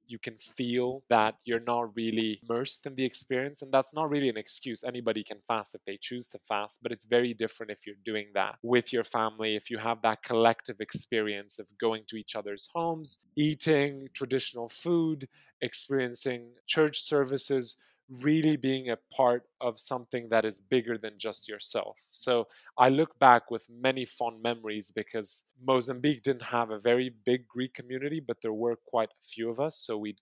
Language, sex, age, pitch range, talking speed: English, male, 20-39, 110-130 Hz, 185 wpm